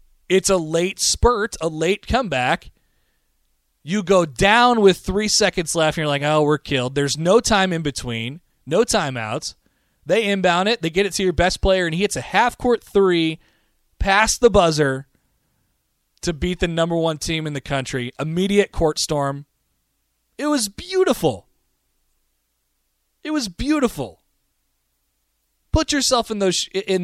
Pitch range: 135-200 Hz